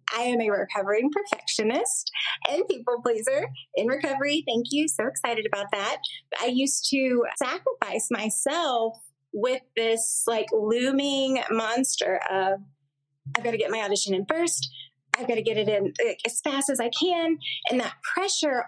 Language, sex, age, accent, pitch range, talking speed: English, female, 20-39, American, 200-245 Hz, 160 wpm